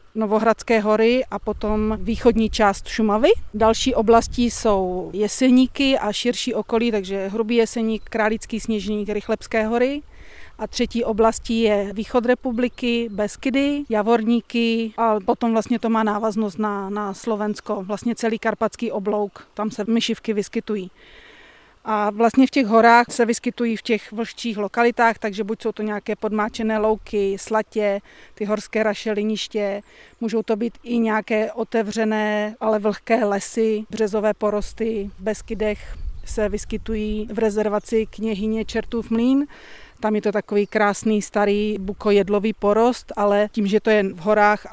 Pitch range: 210-230 Hz